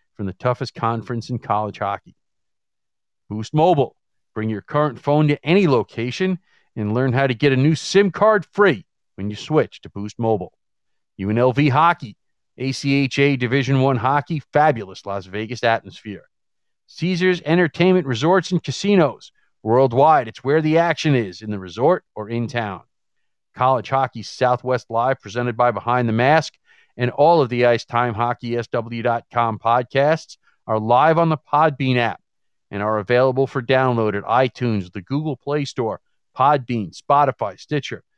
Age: 40-59